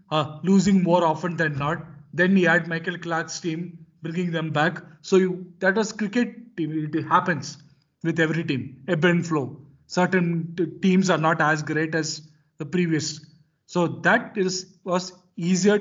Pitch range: 155-185 Hz